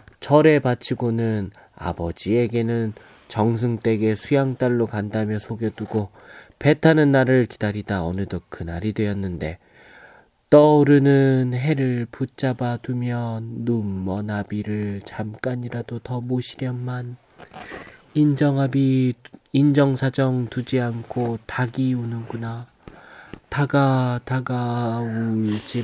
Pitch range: 110-135 Hz